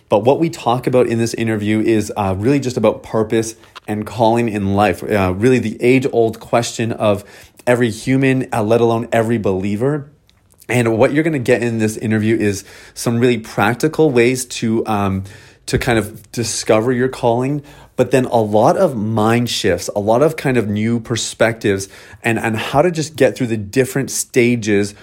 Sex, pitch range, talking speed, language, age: male, 105-120 Hz, 185 wpm, English, 30-49